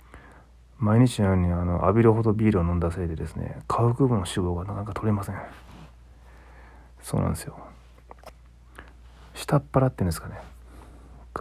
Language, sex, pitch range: Japanese, male, 80-110 Hz